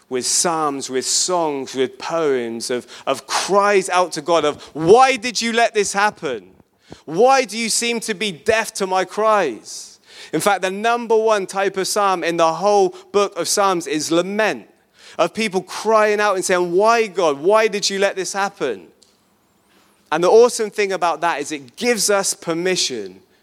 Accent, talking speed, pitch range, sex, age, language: British, 180 wpm, 135-200 Hz, male, 30-49, English